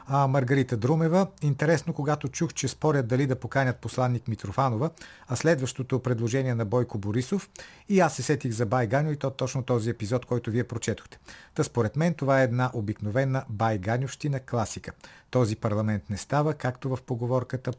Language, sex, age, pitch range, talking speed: Bulgarian, male, 50-69, 115-145 Hz, 160 wpm